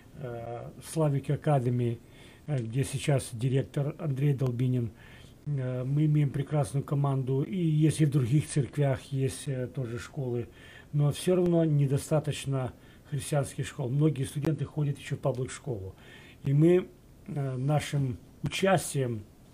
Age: 40-59